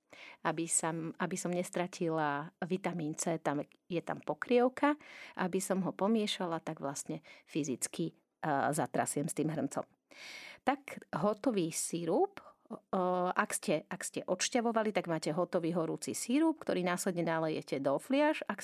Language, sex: Slovak, female